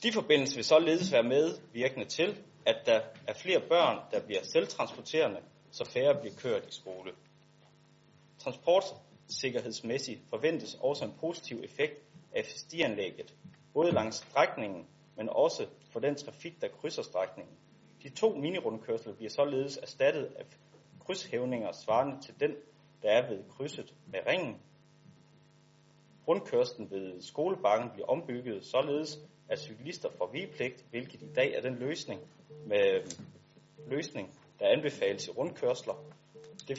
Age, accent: 30-49, native